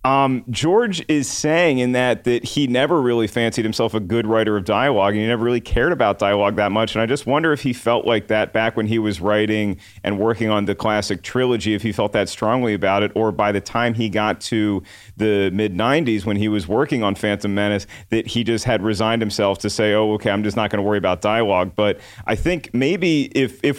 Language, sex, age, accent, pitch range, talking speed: English, male, 40-59, American, 105-125 Hz, 235 wpm